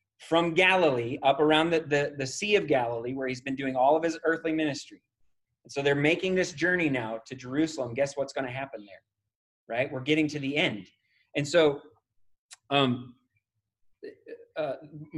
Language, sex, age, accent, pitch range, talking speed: English, male, 30-49, American, 125-160 Hz, 175 wpm